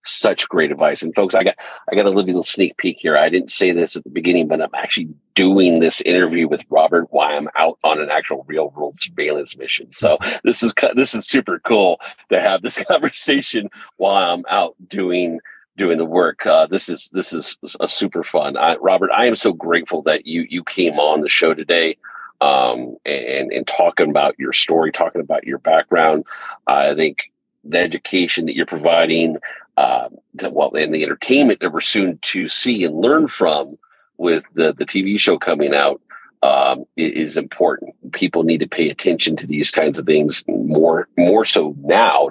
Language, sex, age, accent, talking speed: English, male, 40-59, American, 190 wpm